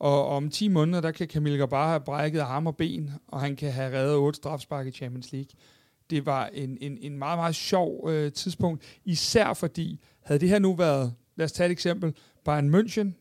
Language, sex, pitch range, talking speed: Danish, male, 145-175 Hz, 215 wpm